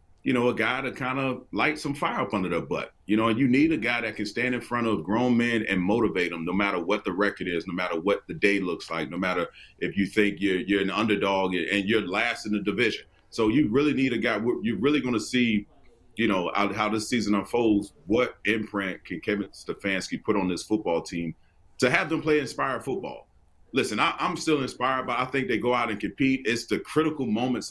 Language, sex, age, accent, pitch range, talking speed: English, male, 30-49, American, 100-125 Hz, 240 wpm